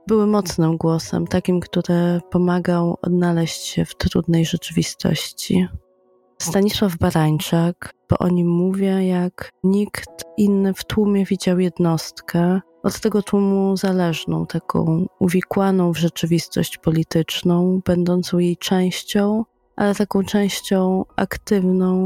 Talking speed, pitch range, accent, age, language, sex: 110 wpm, 170-195 Hz, native, 20-39, Polish, female